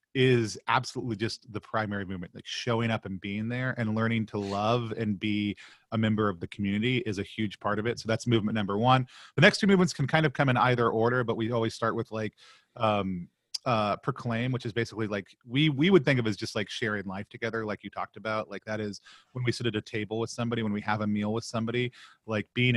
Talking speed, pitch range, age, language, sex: 240 wpm, 105-120 Hz, 30-49, English, male